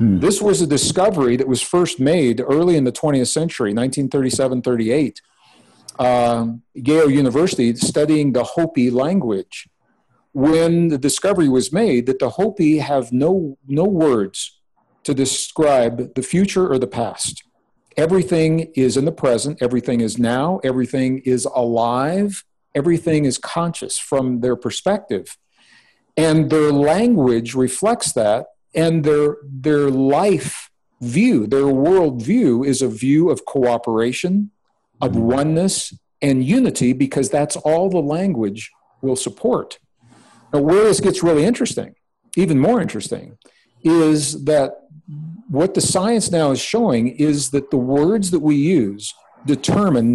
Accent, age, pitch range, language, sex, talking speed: American, 50-69, 125-165 Hz, English, male, 130 wpm